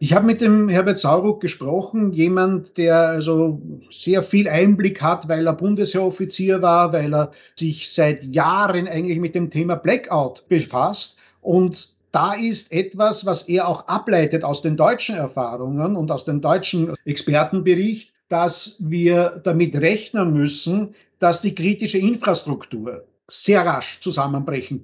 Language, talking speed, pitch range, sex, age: German, 140 wpm, 160-195 Hz, male, 50-69